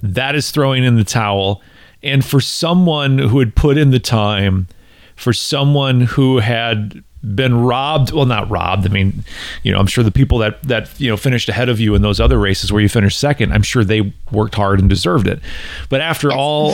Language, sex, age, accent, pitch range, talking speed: English, male, 40-59, American, 100-135 Hz, 210 wpm